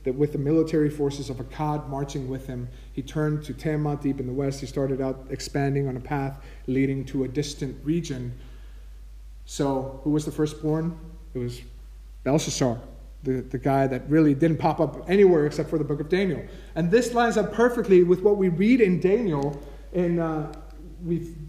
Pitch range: 130-170 Hz